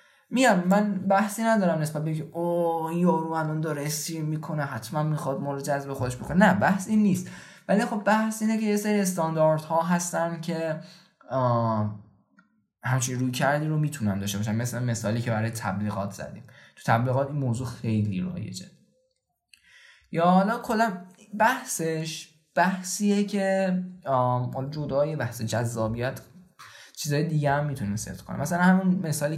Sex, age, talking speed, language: male, 10-29, 145 wpm, Persian